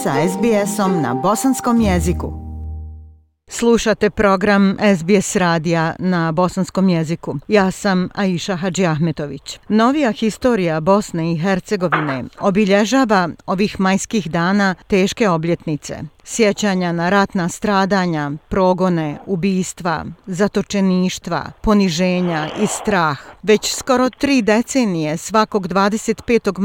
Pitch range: 170-210 Hz